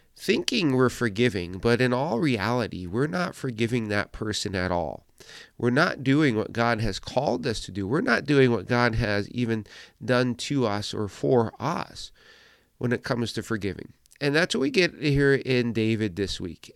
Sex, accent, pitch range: male, American, 110-135 Hz